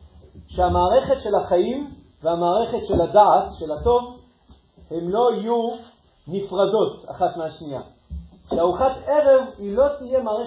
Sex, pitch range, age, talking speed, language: male, 145-225 Hz, 40-59, 110 wpm, Hebrew